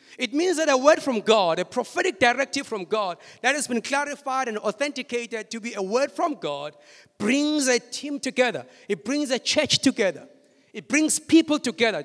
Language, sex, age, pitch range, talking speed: English, male, 50-69, 195-275 Hz, 185 wpm